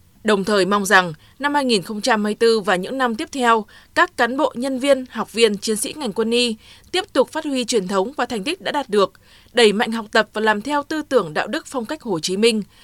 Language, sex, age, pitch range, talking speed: Vietnamese, female, 20-39, 200-265 Hz, 240 wpm